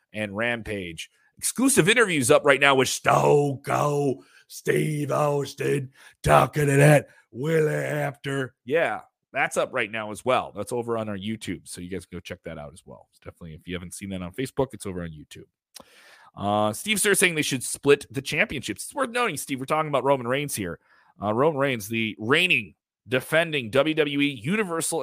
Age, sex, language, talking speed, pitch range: 30-49, male, English, 185 wpm, 115-145 Hz